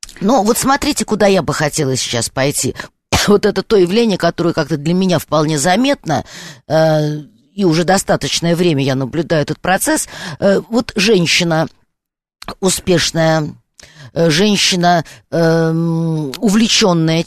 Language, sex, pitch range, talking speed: Russian, female, 150-190 Hz, 130 wpm